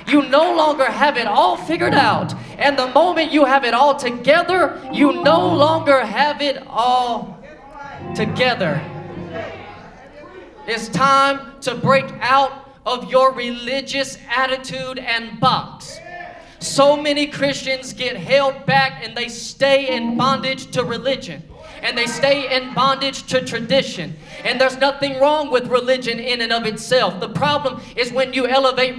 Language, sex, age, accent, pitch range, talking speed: English, male, 20-39, American, 235-275 Hz, 145 wpm